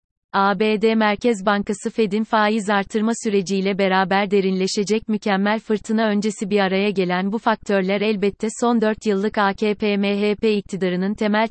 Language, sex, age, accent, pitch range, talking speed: Turkish, female, 30-49, native, 195-220 Hz, 130 wpm